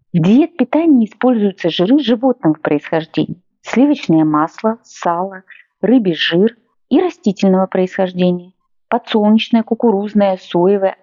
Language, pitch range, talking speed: Russian, 180-245 Hz, 100 wpm